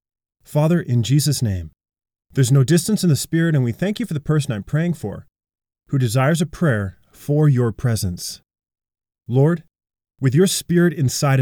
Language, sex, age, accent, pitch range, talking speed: English, male, 30-49, American, 115-155 Hz, 170 wpm